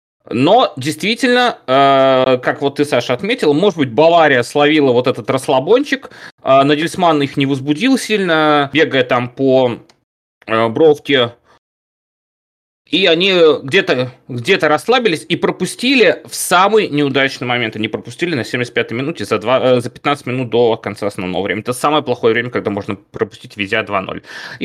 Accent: native